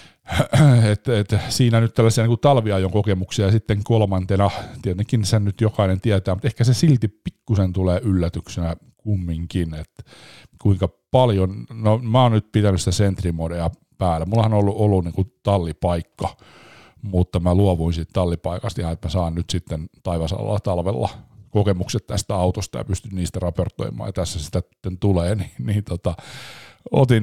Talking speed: 160 wpm